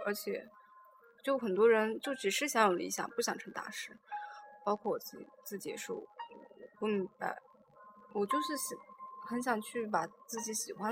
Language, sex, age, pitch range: Chinese, female, 10-29, 205-270 Hz